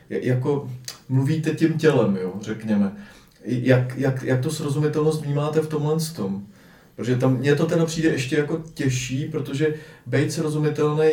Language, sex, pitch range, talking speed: Czech, male, 125-150 Hz, 145 wpm